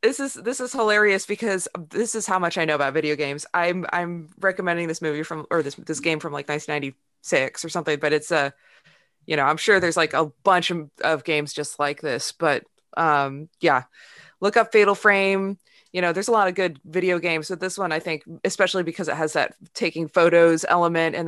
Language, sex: English, female